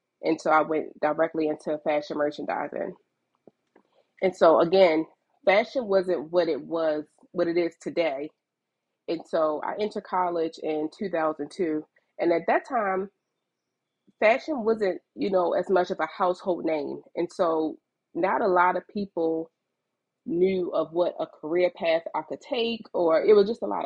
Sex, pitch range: female, 155-190 Hz